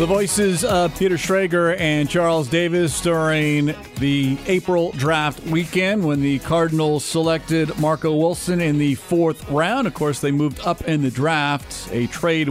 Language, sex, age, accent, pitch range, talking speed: English, male, 40-59, American, 130-155 Hz, 160 wpm